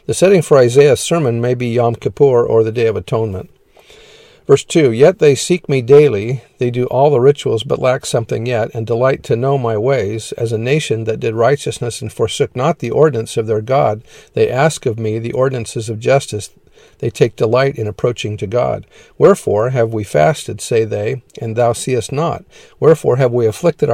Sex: male